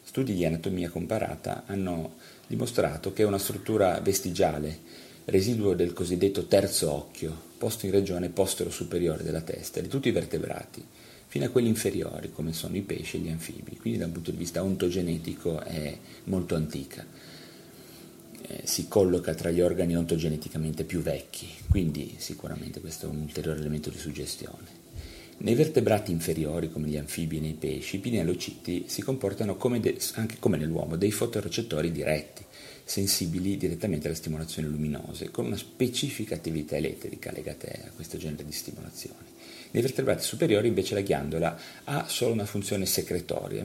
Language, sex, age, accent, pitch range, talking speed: Italian, male, 40-59, native, 80-100 Hz, 155 wpm